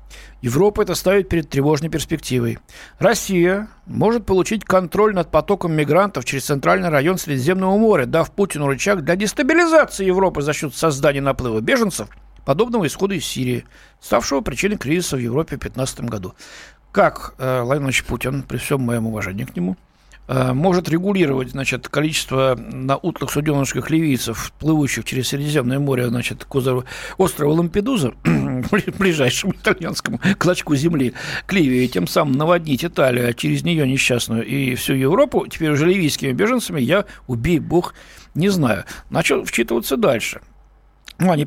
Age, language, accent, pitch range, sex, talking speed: 60-79, Russian, native, 130-185 Hz, male, 135 wpm